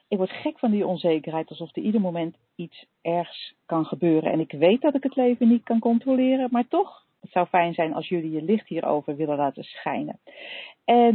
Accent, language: Dutch, Dutch